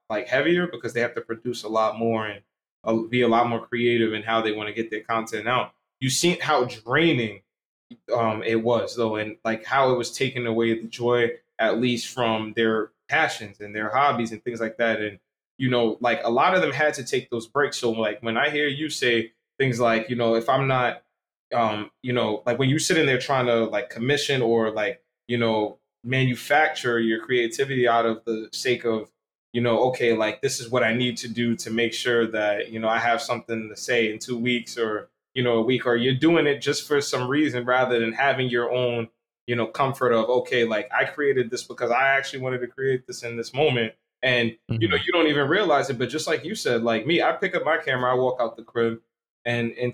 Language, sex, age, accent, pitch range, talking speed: English, male, 20-39, American, 115-130 Hz, 235 wpm